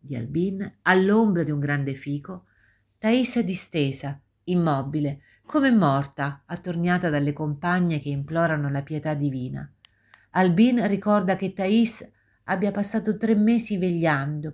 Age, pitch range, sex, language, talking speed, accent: 50-69, 145-190 Hz, female, Italian, 125 wpm, native